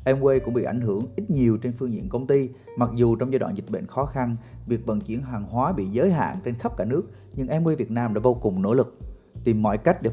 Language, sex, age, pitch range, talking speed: Vietnamese, male, 30-49, 110-135 Hz, 275 wpm